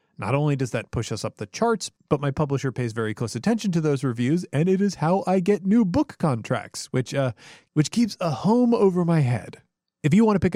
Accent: American